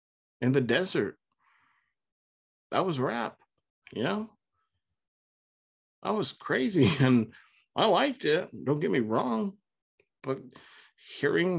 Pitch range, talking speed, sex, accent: 110-160 Hz, 110 wpm, male, American